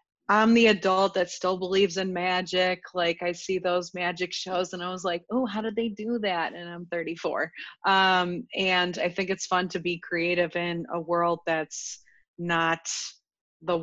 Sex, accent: female, American